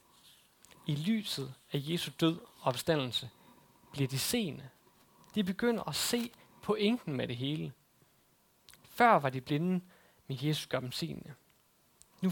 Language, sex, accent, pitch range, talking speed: Danish, male, native, 140-185 Hz, 140 wpm